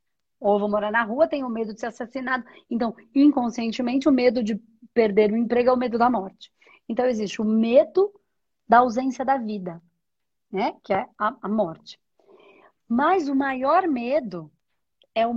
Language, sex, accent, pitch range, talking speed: Portuguese, female, Brazilian, 220-300 Hz, 170 wpm